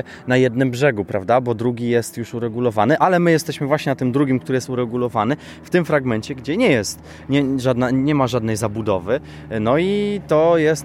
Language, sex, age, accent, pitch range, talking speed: Polish, male, 20-39, native, 110-135 Hz, 190 wpm